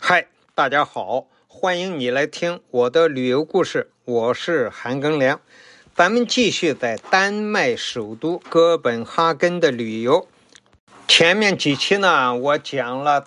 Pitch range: 145-225 Hz